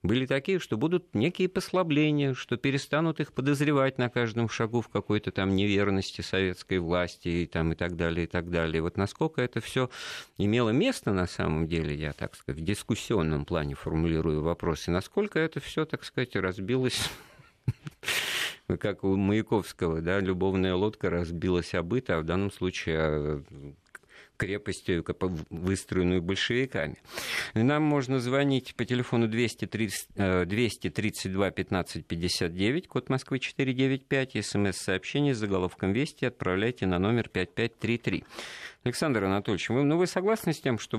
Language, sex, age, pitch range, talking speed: Russian, male, 50-69, 90-130 Hz, 140 wpm